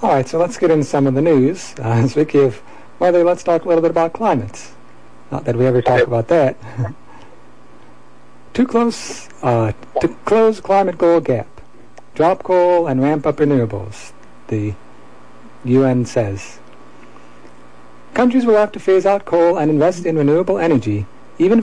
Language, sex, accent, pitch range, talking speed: English, male, American, 115-165 Hz, 165 wpm